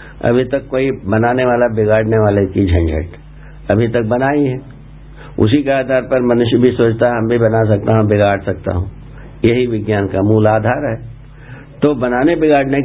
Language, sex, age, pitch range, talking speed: Hindi, male, 60-79, 105-140 Hz, 180 wpm